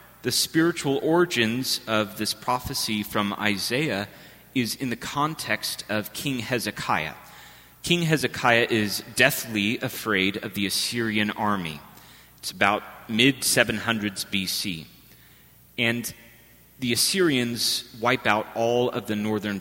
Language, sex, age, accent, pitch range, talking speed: English, male, 30-49, American, 105-130 Hz, 115 wpm